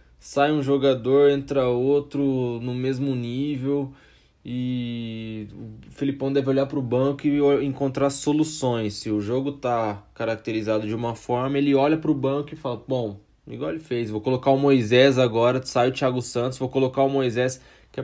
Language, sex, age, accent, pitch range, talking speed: Portuguese, male, 20-39, Brazilian, 110-135 Hz, 175 wpm